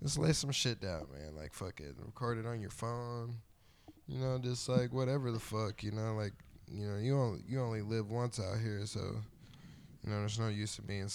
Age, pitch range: 10-29, 105-125 Hz